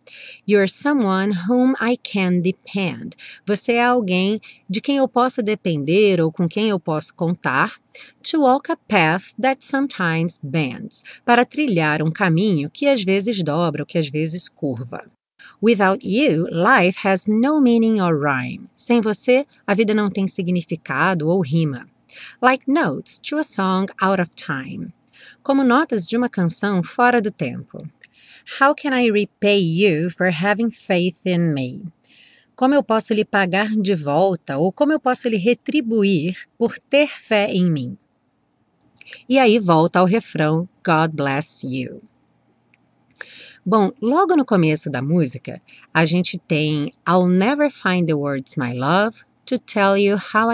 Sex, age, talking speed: female, 30-49, 155 wpm